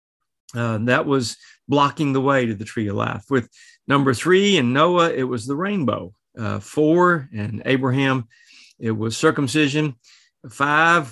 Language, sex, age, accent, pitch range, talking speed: English, male, 50-69, American, 115-150 Hz, 150 wpm